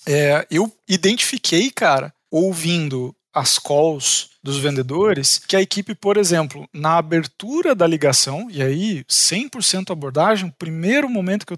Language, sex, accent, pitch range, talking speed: Portuguese, male, Brazilian, 160-210 Hz, 135 wpm